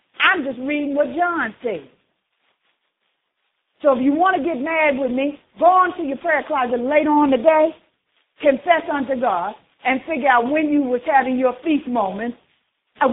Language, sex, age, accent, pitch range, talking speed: English, female, 50-69, American, 275-350 Hz, 170 wpm